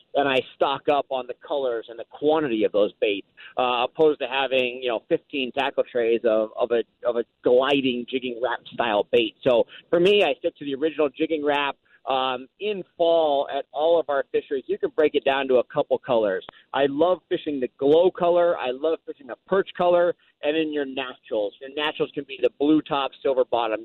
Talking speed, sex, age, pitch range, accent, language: 210 wpm, male, 40-59, 135-200 Hz, American, English